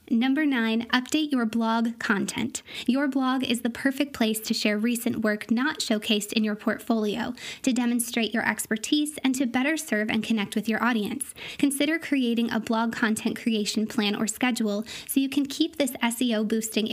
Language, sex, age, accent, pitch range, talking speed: English, female, 20-39, American, 220-255 Hz, 175 wpm